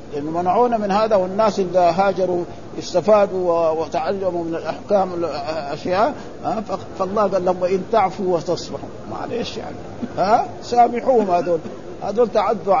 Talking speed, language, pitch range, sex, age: 115 wpm, Arabic, 175-220 Hz, male, 50-69